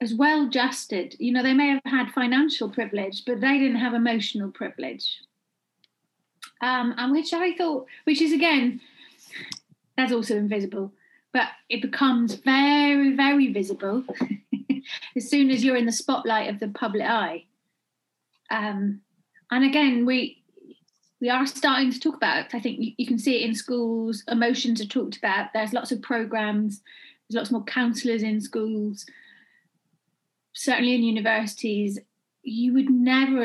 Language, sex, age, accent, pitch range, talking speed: English, female, 30-49, British, 220-275 Hz, 150 wpm